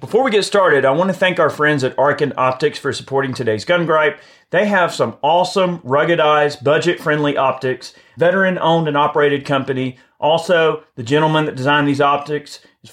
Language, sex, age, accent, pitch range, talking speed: English, male, 30-49, American, 130-155 Hz, 170 wpm